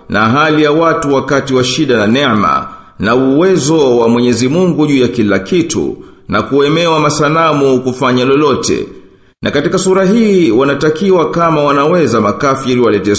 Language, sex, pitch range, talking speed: Swahili, male, 115-160 Hz, 145 wpm